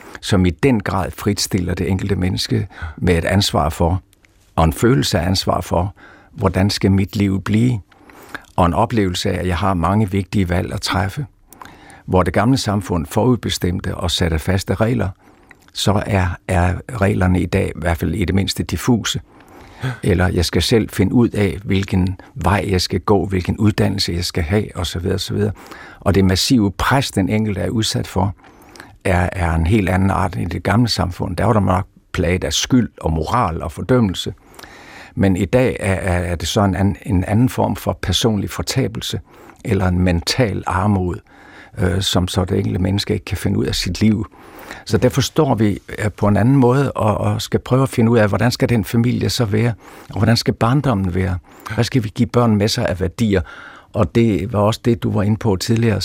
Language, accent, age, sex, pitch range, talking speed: Danish, native, 60-79, male, 90-110 Hz, 190 wpm